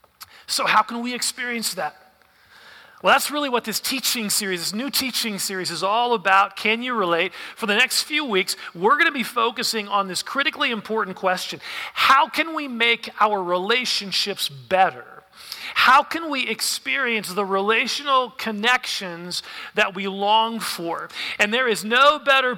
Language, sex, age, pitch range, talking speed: English, male, 40-59, 195-245 Hz, 160 wpm